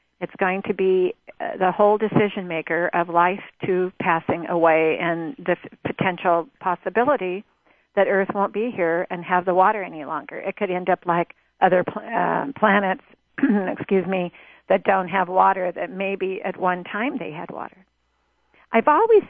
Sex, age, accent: female, 50-69, American